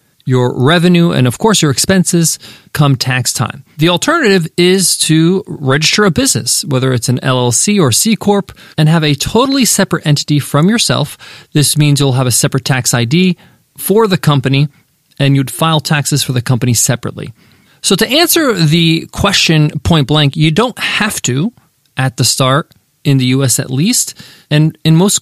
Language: English